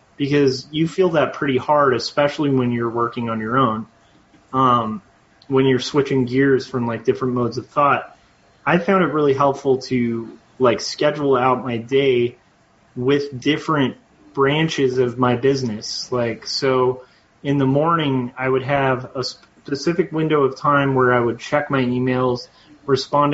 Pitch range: 120-140 Hz